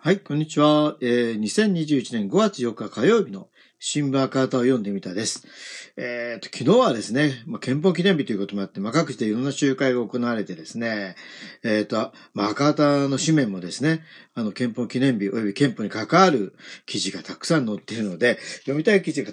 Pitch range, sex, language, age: 125-190 Hz, male, Japanese, 50-69